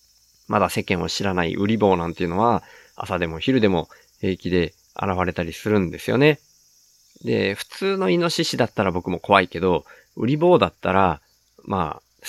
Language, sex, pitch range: Japanese, male, 95-130 Hz